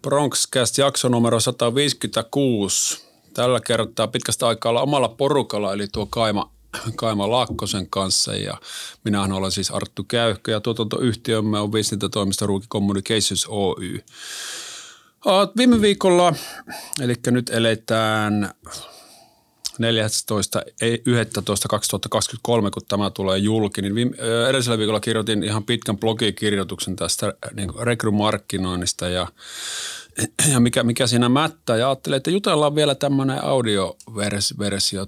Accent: native